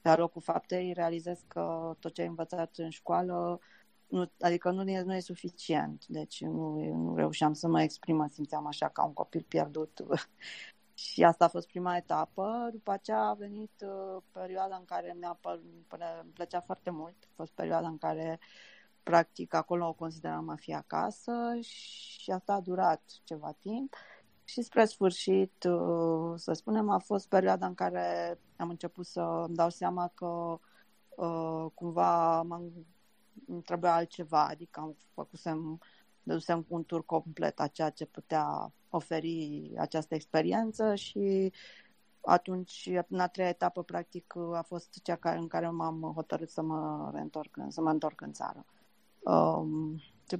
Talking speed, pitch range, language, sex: 145 wpm, 160-185 Hz, Romanian, female